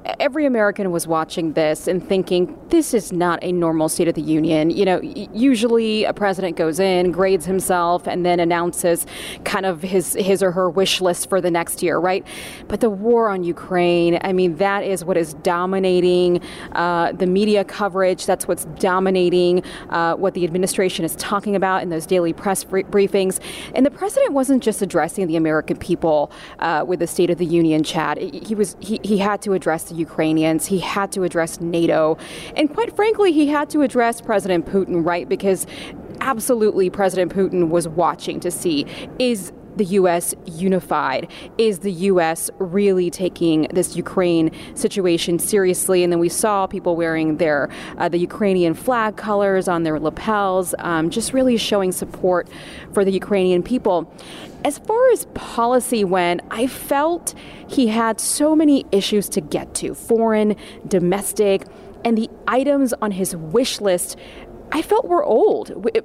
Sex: female